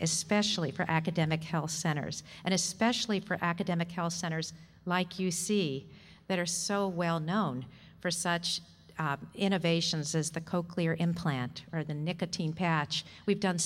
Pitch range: 160-190 Hz